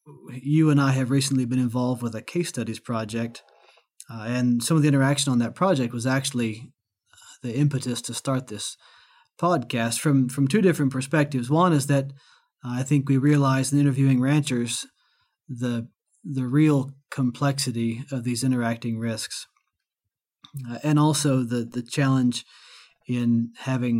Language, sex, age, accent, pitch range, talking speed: English, male, 30-49, American, 120-145 Hz, 155 wpm